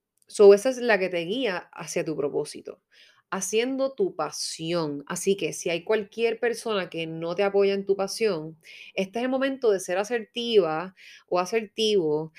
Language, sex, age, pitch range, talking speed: Spanish, female, 30-49, 175-230 Hz, 170 wpm